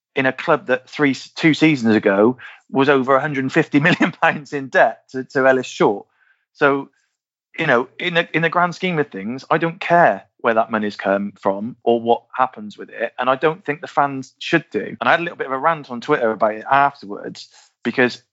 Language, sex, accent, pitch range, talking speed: English, male, British, 125-155 Hz, 205 wpm